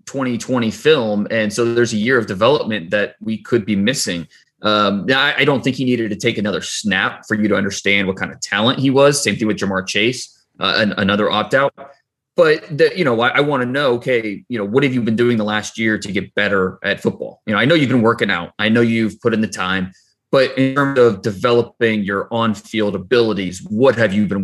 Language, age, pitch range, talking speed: English, 20-39, 100-120 Hz, 230 wpm